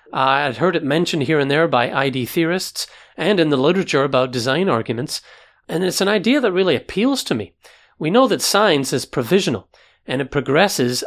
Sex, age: male, 40-59